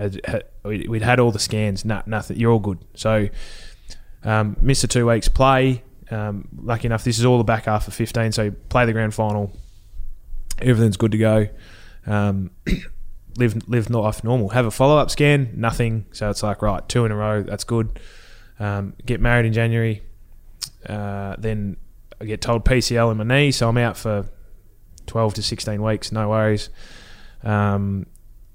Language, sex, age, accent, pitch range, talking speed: English, male, 20-39, Australian, 100-120 Hz, 175 wpm